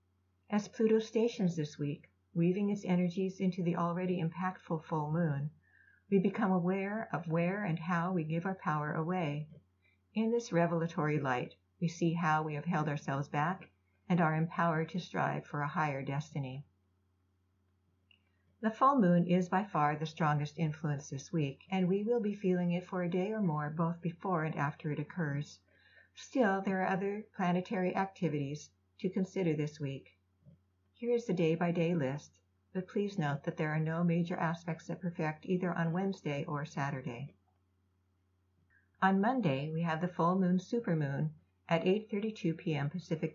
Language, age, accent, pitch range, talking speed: English, 60-79, American, 140-180 Hz, 165 wpm